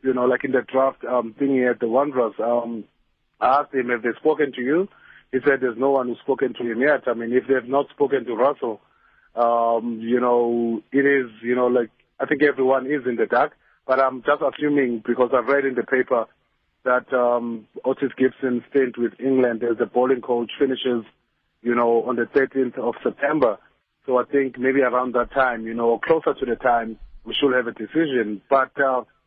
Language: English